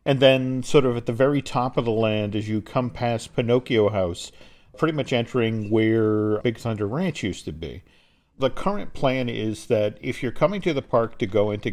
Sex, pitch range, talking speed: male, 105-140 Hz, 210 wpm